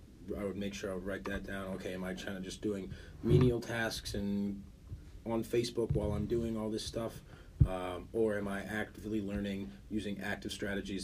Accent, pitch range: American, 90-105 Hz